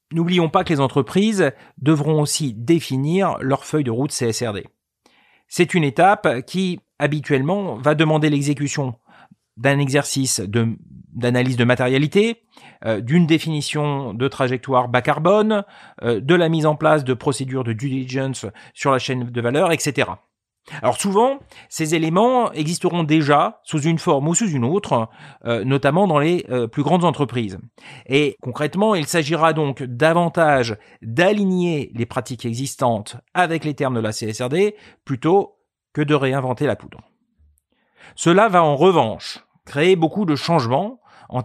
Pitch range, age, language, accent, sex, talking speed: 130-175 Hz, 40-59, French, French, male, 145 wpm